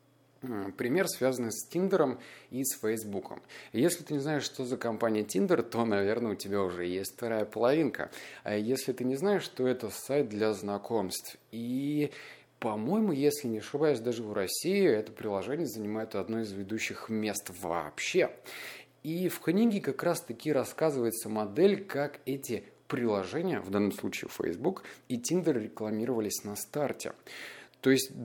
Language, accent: Russian, native